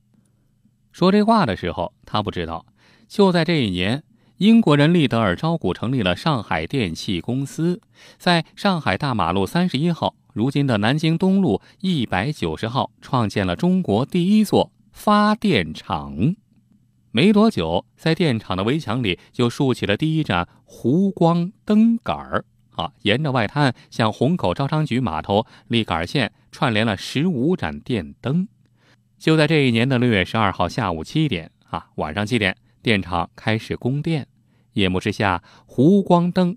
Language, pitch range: Chinese, 105-180 Hz